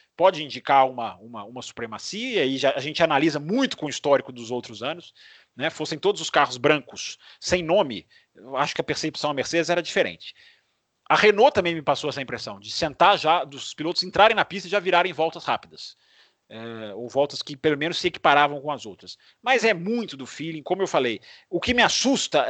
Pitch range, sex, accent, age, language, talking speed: 145-220 Hz, male, Brazilian, 40-59, Portuguese, 210 wpm